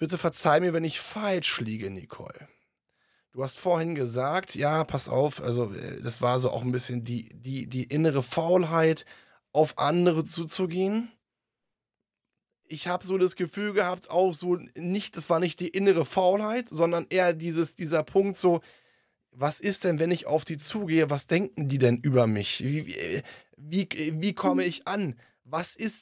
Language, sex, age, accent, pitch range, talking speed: German, male, 20-39, German, 145-190 Hz, 160 wpm